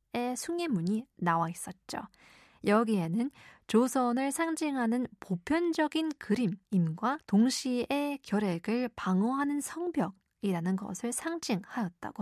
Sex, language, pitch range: female, Korean, 190-255 Hz